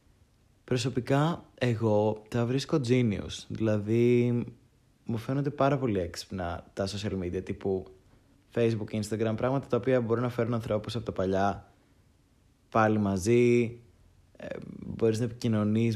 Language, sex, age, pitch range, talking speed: Greek, male, 20-39, 100-120 Hz, 125 wpm